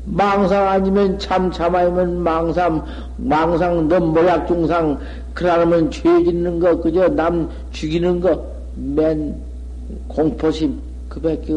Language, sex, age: Korean, male, 50-69